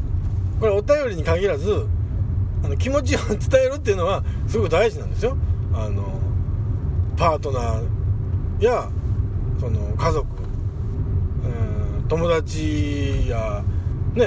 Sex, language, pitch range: male, Japanese, 95-115 Hz